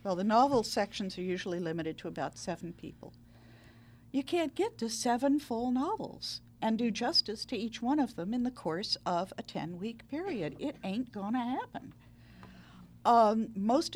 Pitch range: 135-230 Hz